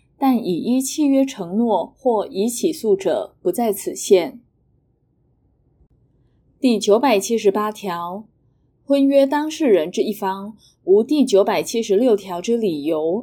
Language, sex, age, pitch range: Chinese, female, 20-39, 180-265 Hz